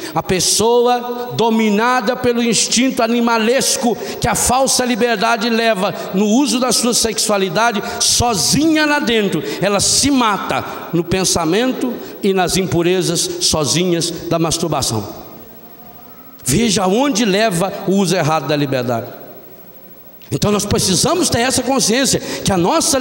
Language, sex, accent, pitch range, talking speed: Portuguese, male, Brazilian, 185-255 Hz, 125 wpm